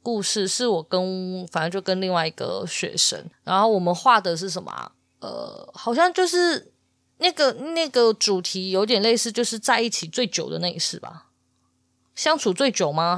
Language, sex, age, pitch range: Chinese, female, 20-39, 180-250 Hz